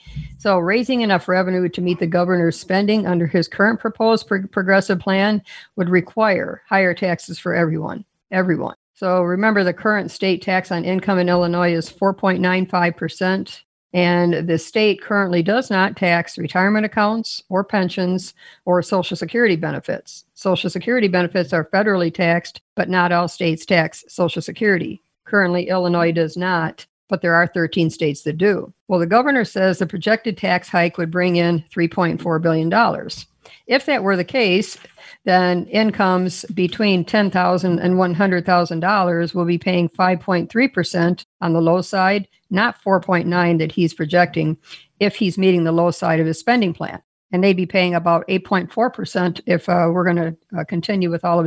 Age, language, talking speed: 50-69, English, 160 wpm